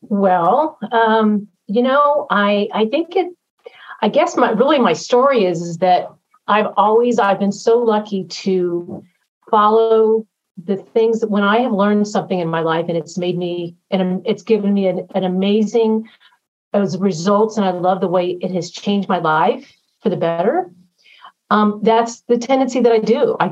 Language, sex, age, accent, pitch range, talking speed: English, female, 40-59, American, 185-220 Hz, 180 wpm